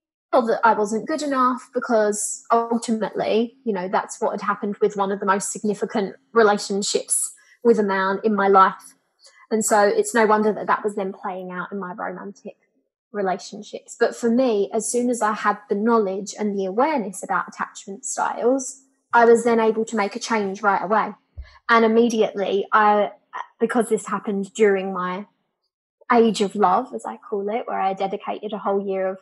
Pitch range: 200-260 Hz